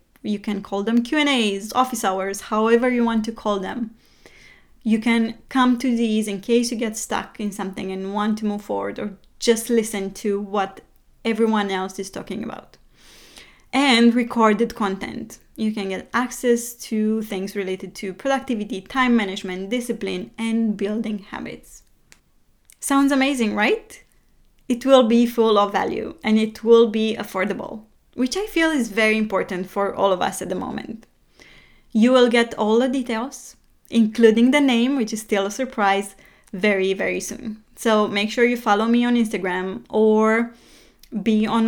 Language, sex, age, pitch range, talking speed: English, female, 20-39, 200-240 Hz, 165 wpm